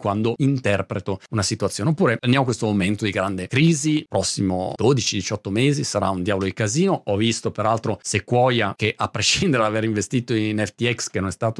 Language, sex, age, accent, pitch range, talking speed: Italian, male, 40-59, native, 105-135 Hz, 185 wpm